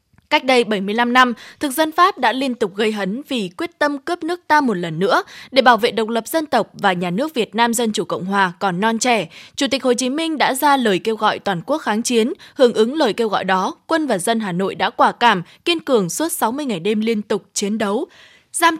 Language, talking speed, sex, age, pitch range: Vietnamese, 250 wpm, female, 20-39, 205-280 Hz